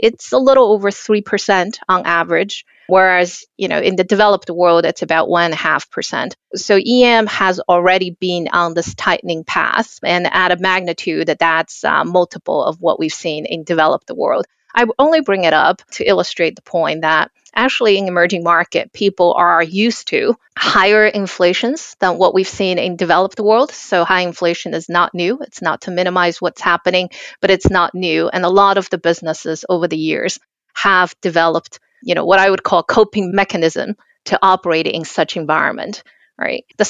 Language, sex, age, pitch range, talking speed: English, female, 30-49, 170-205 Hz, 180 wpm